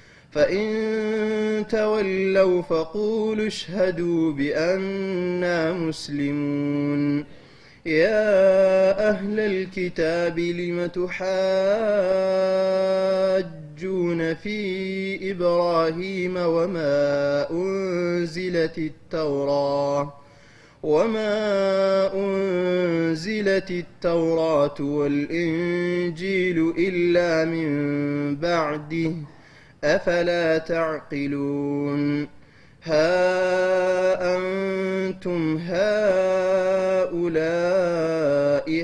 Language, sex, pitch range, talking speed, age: Amharic, male, 155-190 Hz, 40 wpm, 20-39